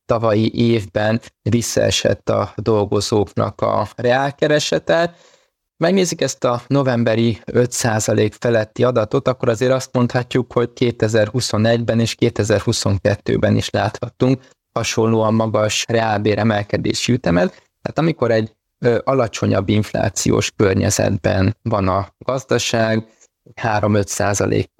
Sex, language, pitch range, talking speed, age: male, Hungarian, 100-120 Hz, 90 wpm, 20-39